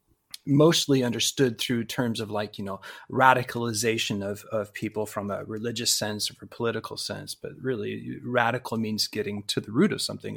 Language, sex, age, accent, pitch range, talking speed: English, male, 30-49, American, 115-140 Hz, 180 wpm